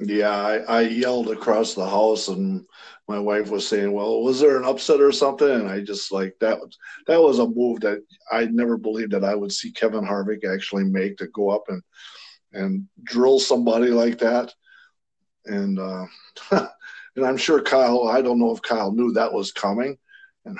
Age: 50-69